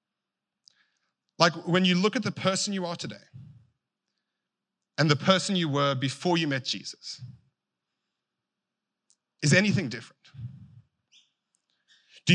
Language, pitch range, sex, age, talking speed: English, 150-200 Hz, male, 30-49, 110 wpm